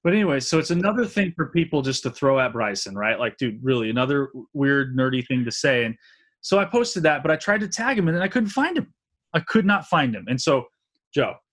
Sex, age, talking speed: male, 20-39, 250 wpm